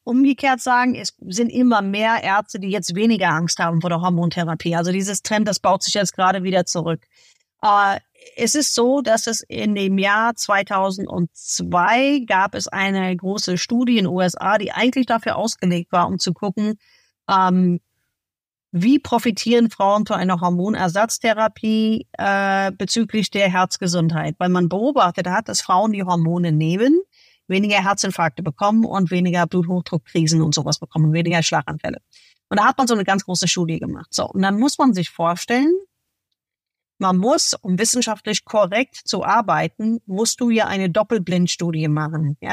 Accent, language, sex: German, German, female